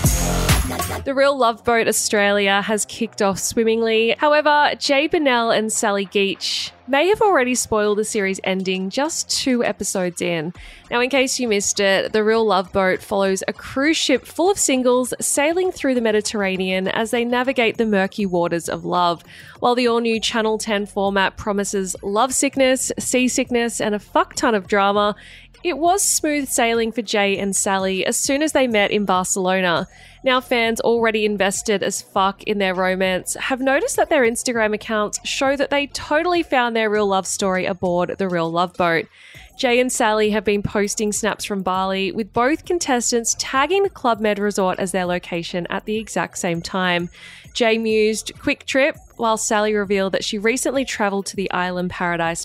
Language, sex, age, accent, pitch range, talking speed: English, female, 20-39, Australian, 195-250 Hz, 175 wpm